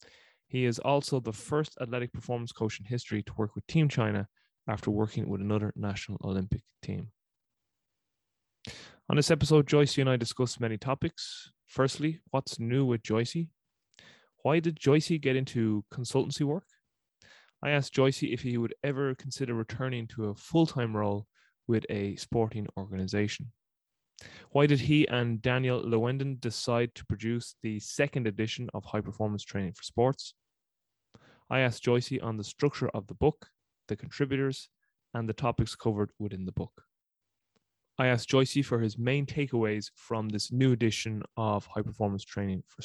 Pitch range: 110-135 Hz